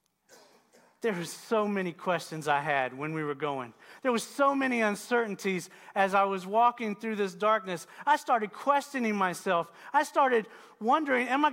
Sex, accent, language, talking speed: male, American, English, 165 wpm